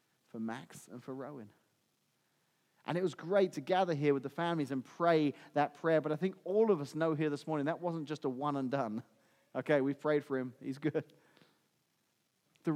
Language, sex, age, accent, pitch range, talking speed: English, male, 30-49, British, 140-175 Hz, 205 wpm